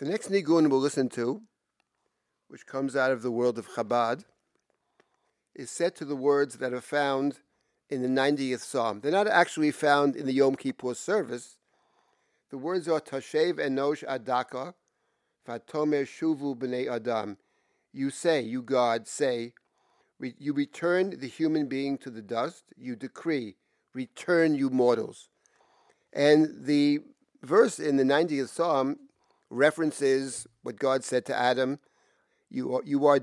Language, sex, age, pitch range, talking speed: English, male, 50-69, 125-145 Hz, 145 wpm